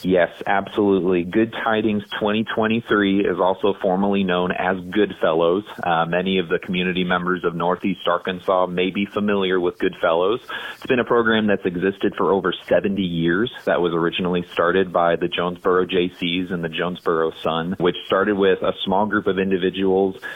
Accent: American